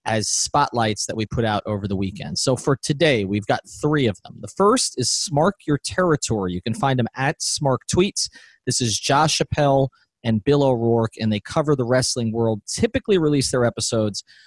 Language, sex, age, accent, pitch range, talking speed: English, male, 30-49, American, 110-140 Hz, 195 wpm